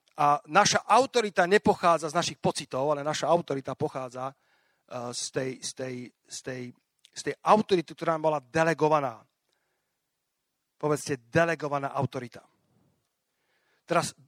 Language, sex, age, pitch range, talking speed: Slovak, male, 40-59, 145-180 Hz, 115 wpm